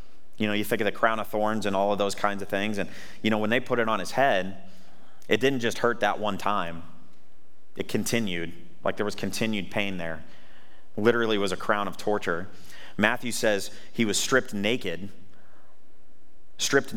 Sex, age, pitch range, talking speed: male, 30-49, 90-105 Hz, 190 wpm